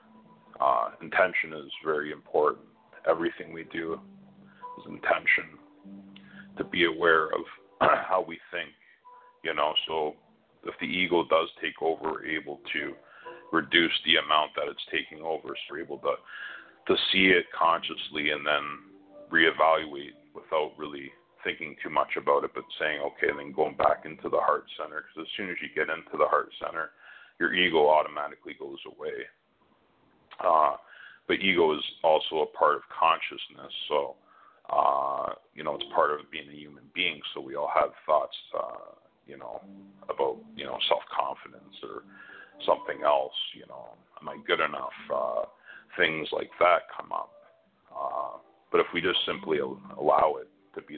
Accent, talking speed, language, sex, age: American, 160 wpm, English, male, 40-59